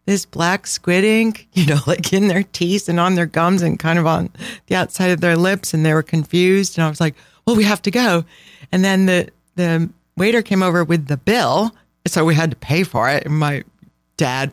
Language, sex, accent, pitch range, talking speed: English, female, American, 140-175 Hz, 230 wpm